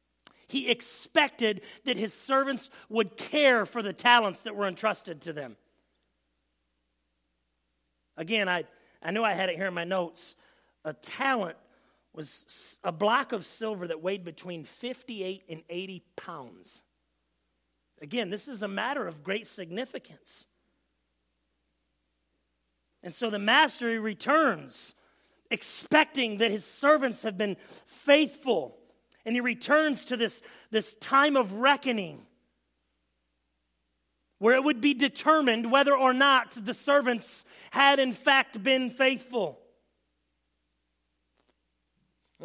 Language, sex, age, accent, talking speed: English, male, 40-59, American, 120 wpm